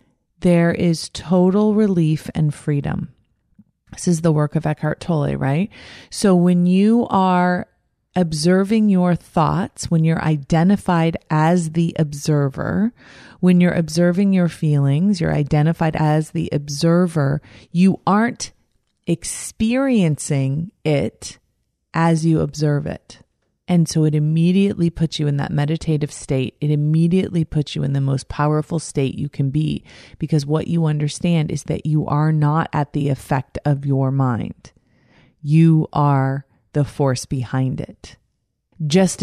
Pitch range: 145-170 Hz